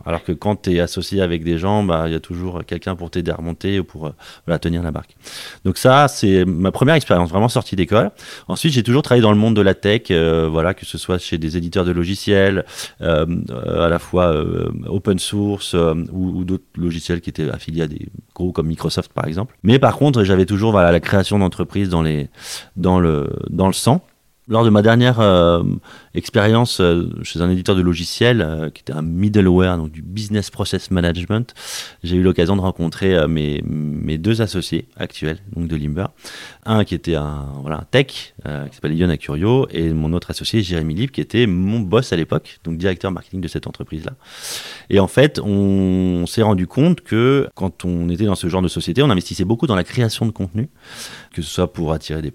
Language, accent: French, French